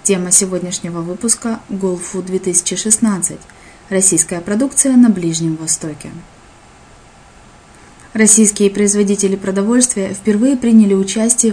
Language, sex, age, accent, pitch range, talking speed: Russian, female, 20-39, native, 185-220 Hz, 90 wpm